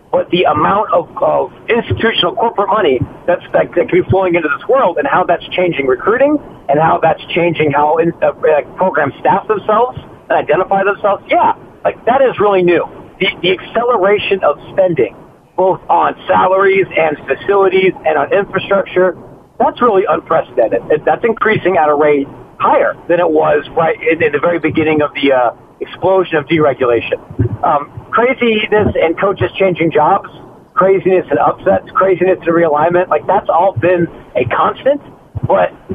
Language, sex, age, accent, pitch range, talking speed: English, male, 40-59, American, 165-215 Hz, 160 wpm